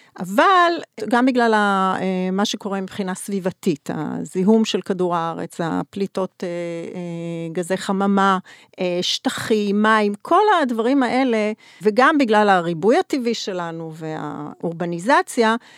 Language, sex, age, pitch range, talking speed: English, female, 40-59, 185-245 Hz, 95 wpm